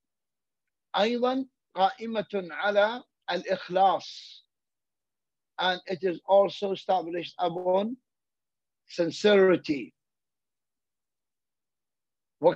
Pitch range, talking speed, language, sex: 180-220 Hz, 55 wpm, English, male